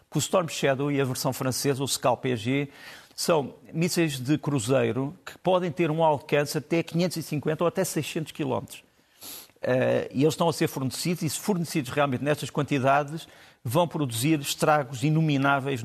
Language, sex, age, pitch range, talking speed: Portuguese, male, 50-69, 135-165 Hz, 160 wpm